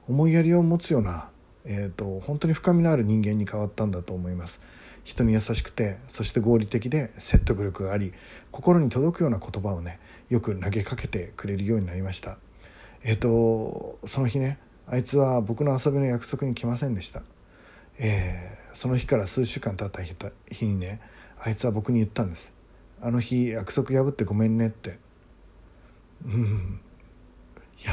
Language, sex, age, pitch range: Japanese, male, 40-59, 100-120 Hz